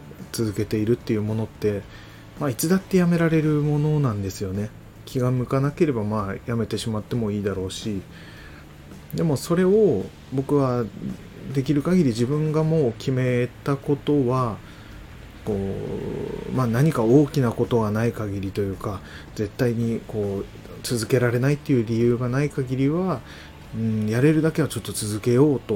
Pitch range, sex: 100-135 Hz, male